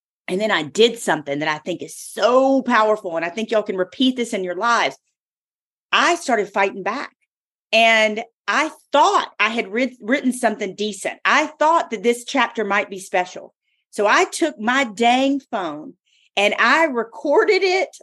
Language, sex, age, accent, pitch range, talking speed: English, female, 40-59, American, 205-285 Hz, 170 wpm